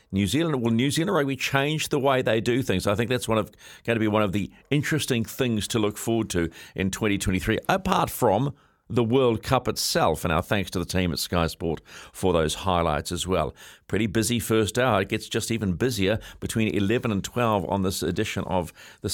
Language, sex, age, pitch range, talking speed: English, male, 50-69, 95-120 Hz, 215 wpm